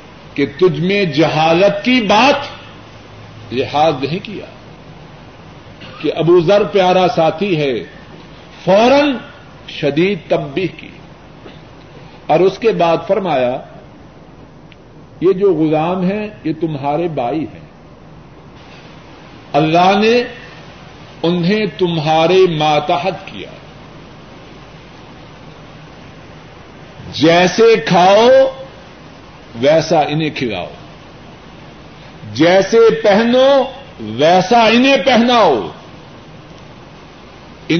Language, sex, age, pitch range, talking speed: Urdu, male, 50-69, 155-200 Hz, 75 wpm